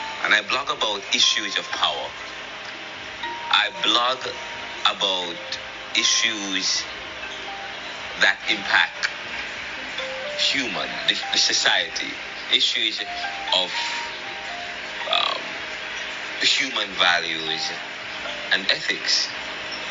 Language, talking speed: English, 70 wpm